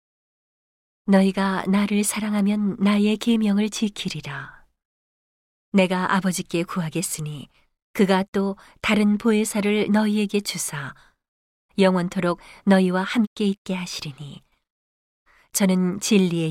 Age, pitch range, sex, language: 40-59, 170-205 Hz, female, Korean